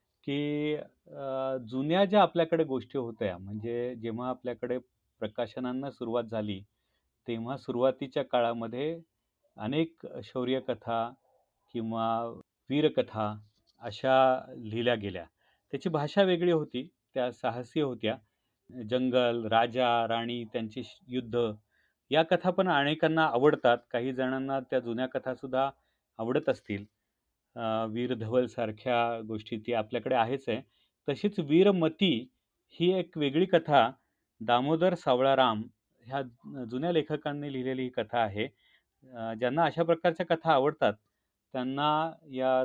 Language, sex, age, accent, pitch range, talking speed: Marathi, male, 40-59, native, 115-145 Hz, 85 wpm